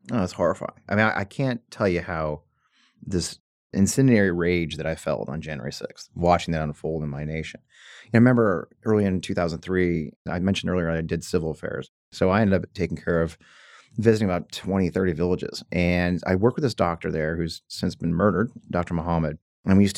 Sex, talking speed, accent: male, 200 wpm, American